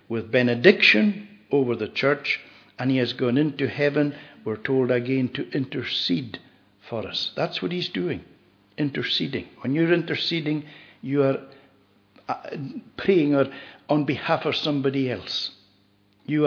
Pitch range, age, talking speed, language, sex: 120-155 Hz, 60-79, 130 wpm, English, male